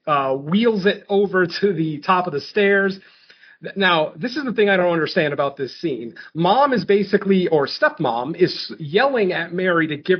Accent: American